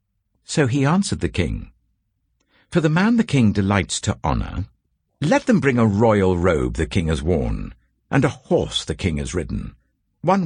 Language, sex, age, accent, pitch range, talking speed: English, male, 60-79, British, 90-130 Hz, 180 wpm